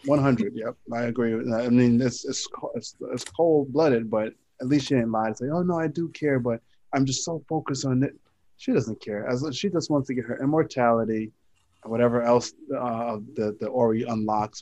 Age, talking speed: 20-39, 215 wpm